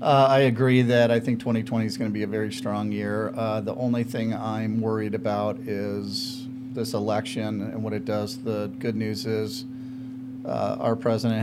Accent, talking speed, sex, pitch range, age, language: American, 190 wpm, male, 115-130 Hz, 40-59, English